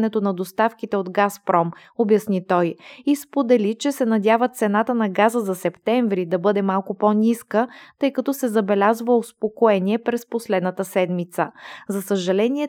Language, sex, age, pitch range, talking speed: Bulgarian, female, 20-39, 200-240 Hz, 145 wpm